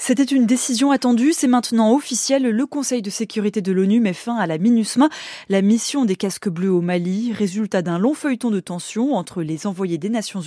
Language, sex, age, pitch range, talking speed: French, female, 20-39, 195-250 Hz, 205 wpm